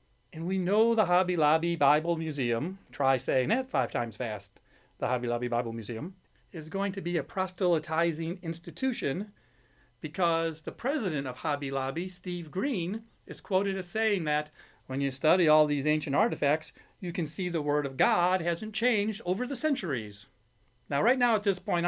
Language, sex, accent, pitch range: English, male, American, 145-200 Hz